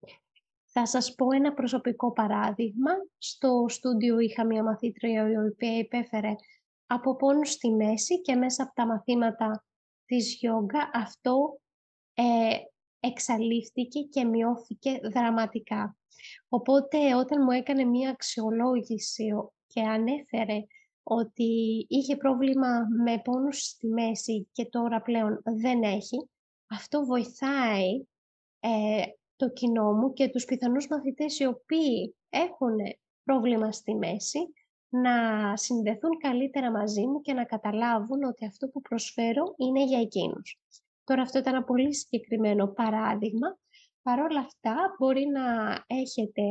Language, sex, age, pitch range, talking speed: Greek, female, 20-39, 225-270 Hz, 120 wpm